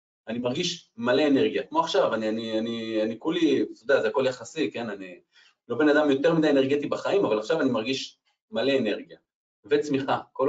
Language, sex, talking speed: Hebrew, male, 190 wpm